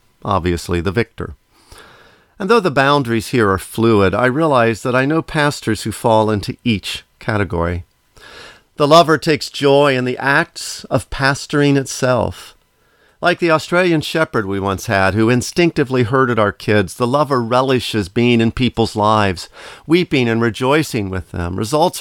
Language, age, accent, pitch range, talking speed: English, 50-69, American, 100-140 Hz, 155 wpm